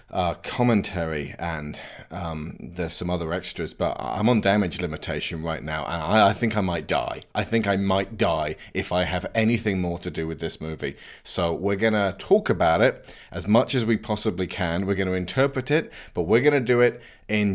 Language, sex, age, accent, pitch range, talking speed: English, male, 30-49, British, 85-115 Hz, 210 wpm